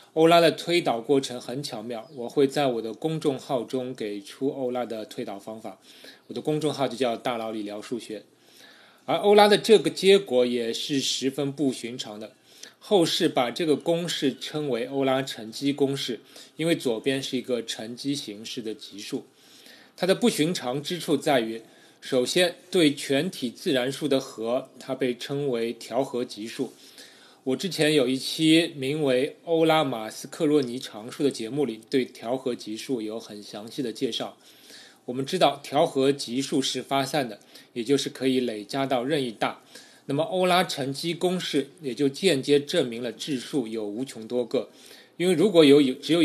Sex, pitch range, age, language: male, 120-150 Hz, 20-39, Chinese